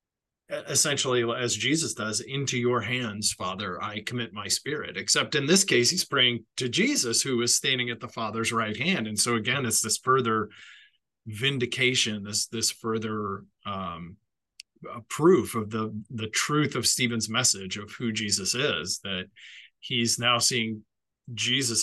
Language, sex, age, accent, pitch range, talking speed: English, male, 30-49, American, 110-125 Hz, 155 wpm